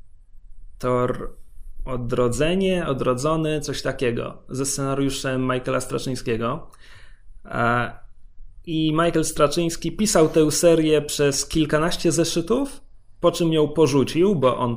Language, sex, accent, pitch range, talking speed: Polish, male, native, 120-170 Hz, 100 wpm